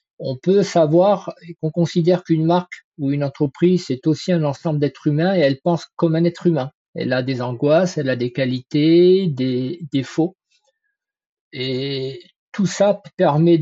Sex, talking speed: male, 165 wpm